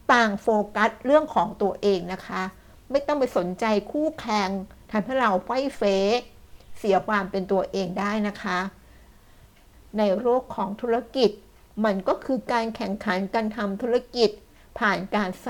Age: 60-79